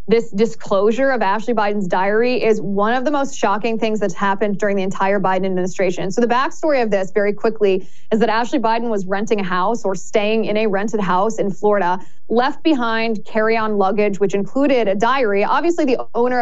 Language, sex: English, female